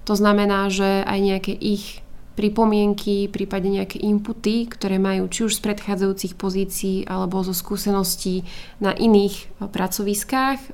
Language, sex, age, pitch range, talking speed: Slovak, female, 20-39, 195-210 Hz, 130 wpm